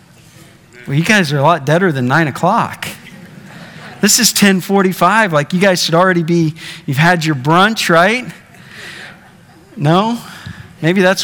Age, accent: 40-59, American